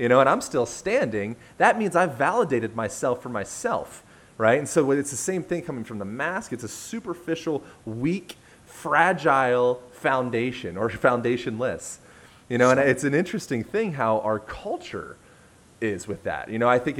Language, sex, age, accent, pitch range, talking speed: English, male, 30-49, American, 120-195 Hz, 175 wpm